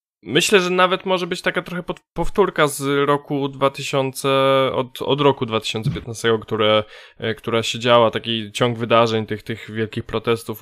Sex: male